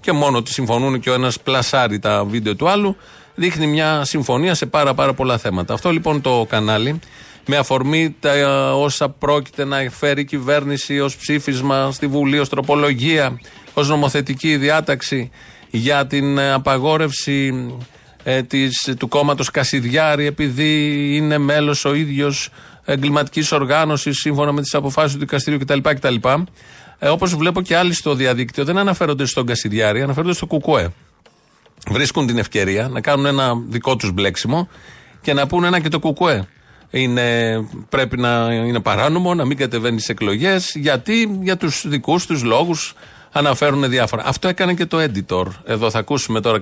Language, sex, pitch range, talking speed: Greek, male, 120-150 Hz, 155 wpm